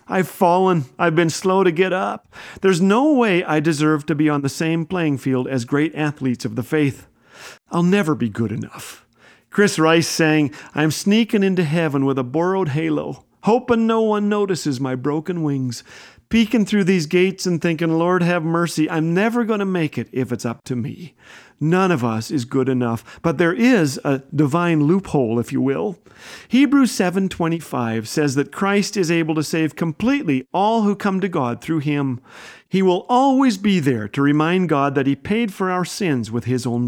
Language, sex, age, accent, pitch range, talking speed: English, male, 40-59, American, 140-195 Hz, 190 wpm